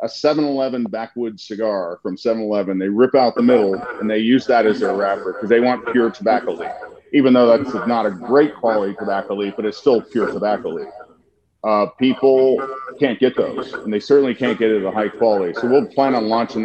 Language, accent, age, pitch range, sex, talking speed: English, American, 40-59, 105-125 Hz, male, 215 wpm